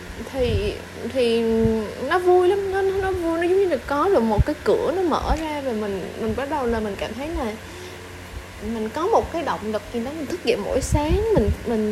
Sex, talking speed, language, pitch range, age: female, 225 wpm, Vietnamese, 185-290 Hz, 20-39